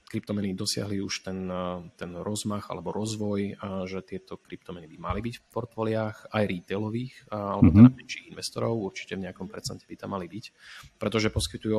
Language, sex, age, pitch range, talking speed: Slovak, male, 30-49, 95-110 Hz, 160 wpm